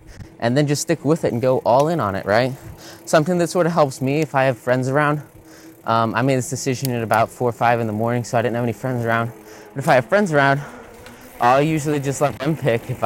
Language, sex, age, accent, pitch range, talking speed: English, male, 20-39, American, 115-145 Hz, 260 wpm